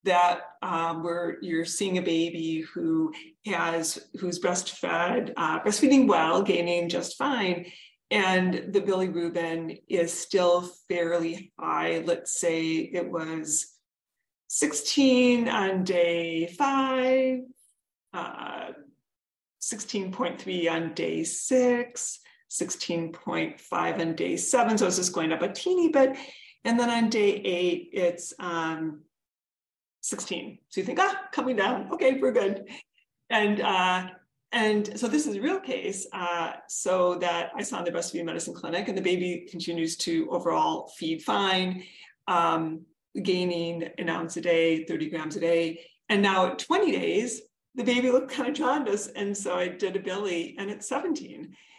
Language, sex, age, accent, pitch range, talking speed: English, female, 40-59, American, 170-225 Hz, 140 wpm